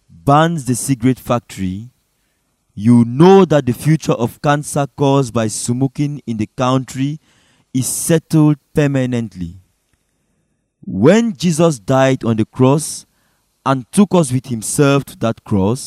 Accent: French